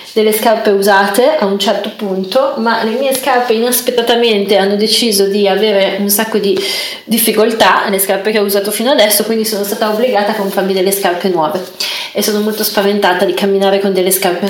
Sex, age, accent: female, 30-49, native